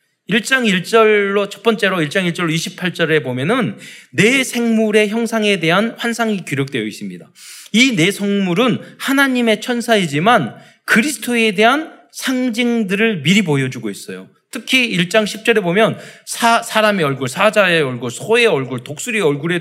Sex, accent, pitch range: male, native, 165-235 Hz